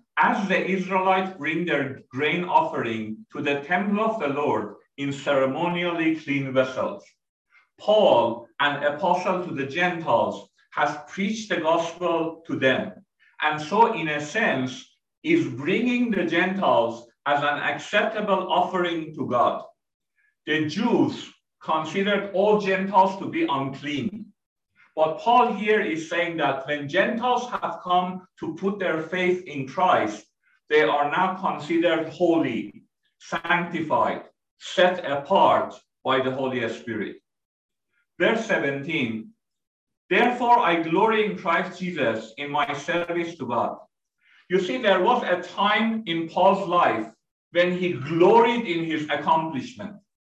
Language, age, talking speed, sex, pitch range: English, 50-69, 130 wpm, male, 150-205 Hz